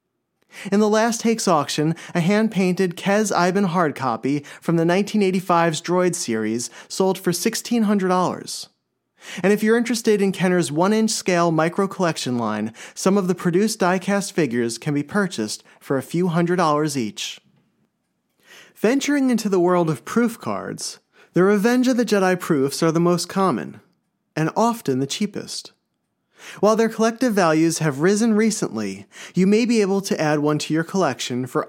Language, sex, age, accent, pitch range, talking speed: English, male, 30-49, American, 155-205 Hz, 155 wpm